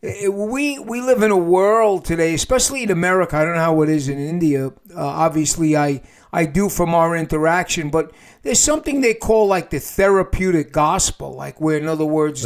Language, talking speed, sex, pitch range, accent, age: English, 195 wpm, male, 150-190 Hz, American, 50-69